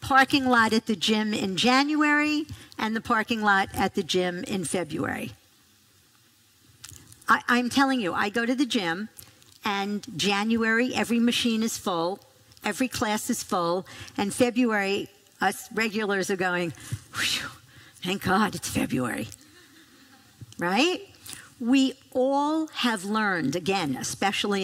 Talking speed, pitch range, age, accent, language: 130 wpm, 175-245 Hz, 50-69, American, English